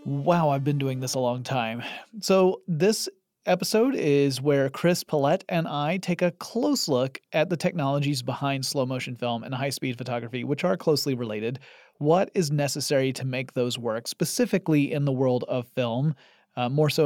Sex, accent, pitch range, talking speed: male, American, 130-175 Hz, 180 wpm